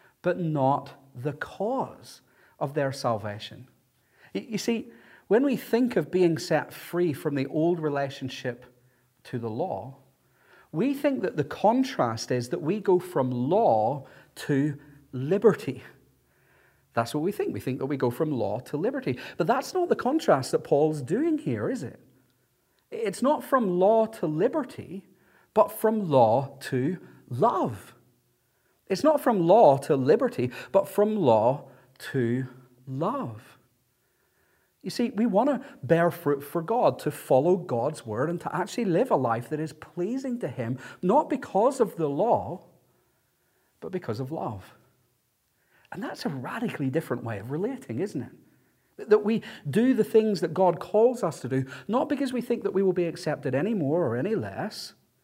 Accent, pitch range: British, 130-210 Hz